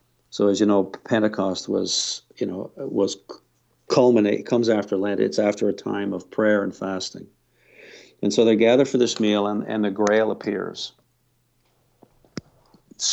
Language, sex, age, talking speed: English, male, 50-69, 155 wpm